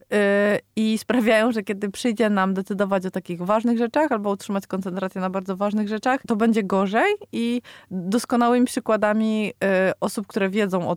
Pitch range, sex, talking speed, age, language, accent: 175-210 Hz, female, 155 wpm, 20-39, Polish, native